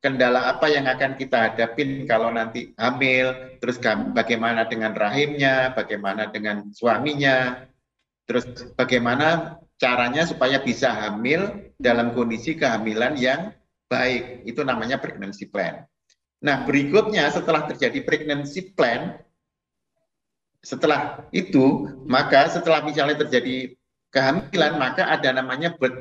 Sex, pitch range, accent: male, 130-165 Hz, native